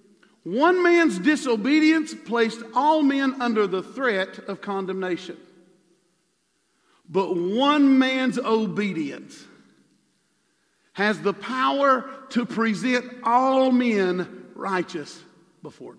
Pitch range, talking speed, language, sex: 180-265 Hz, 90 wpm, English, male